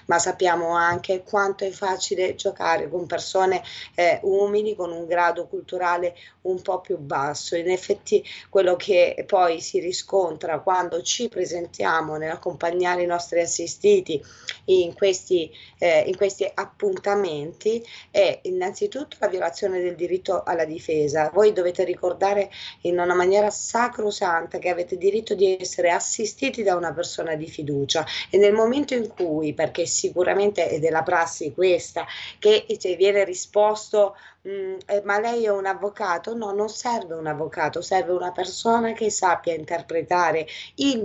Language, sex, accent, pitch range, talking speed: Italian, female, native, 170-215 Hz, 140 wpm